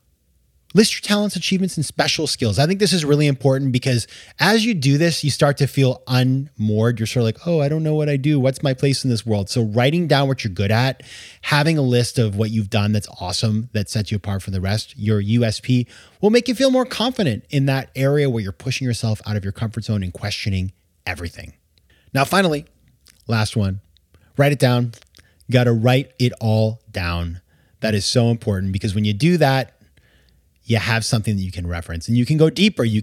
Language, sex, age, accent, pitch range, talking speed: English, male, 30-49, American, 105-145 Hz, 220 wpm